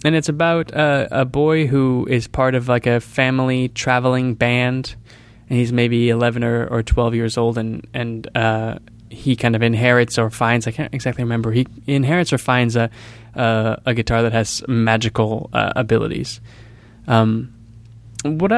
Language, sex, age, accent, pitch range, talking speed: English, male, 20-39, American, 115-130 Hz, 165 wpm